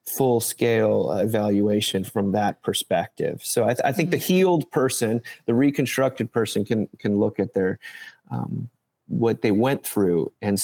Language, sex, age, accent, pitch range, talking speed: English, male, 30-49, American, 110-135 Hz, 150 wpm